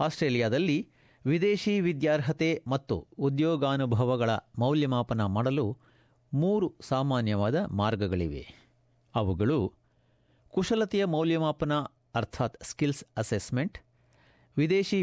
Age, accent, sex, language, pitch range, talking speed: 50-69, native, male, Kannada, 120-150 Hz, 70 wpm